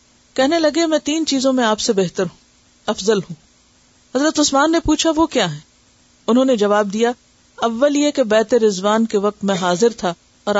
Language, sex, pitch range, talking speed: Urdu, female, 200-245 Hz, 180 wpm